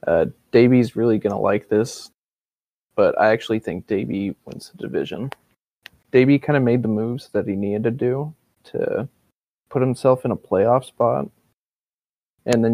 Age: 20-39